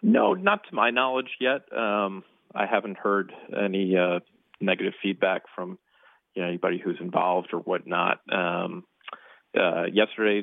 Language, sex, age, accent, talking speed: English, male, 40-59, American, 145 wpm